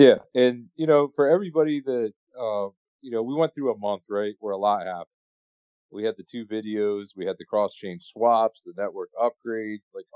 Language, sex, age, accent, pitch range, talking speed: English, male, 40-59, American, 100-120 Hz, 205 wpm